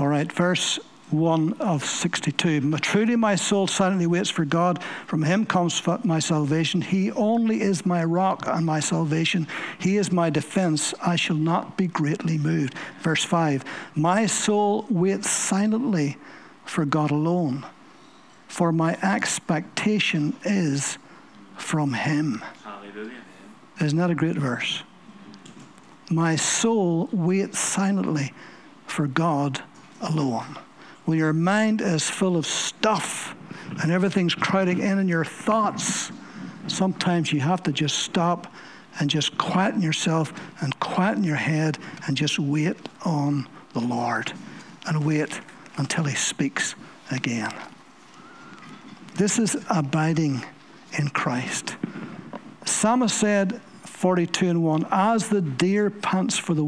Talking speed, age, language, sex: 125 wpm, 60-79, English, male